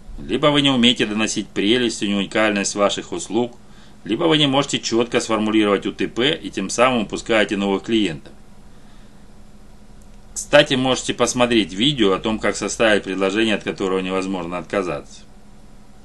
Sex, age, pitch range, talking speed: male, 30-49, 95-120 Hz, 135 wpm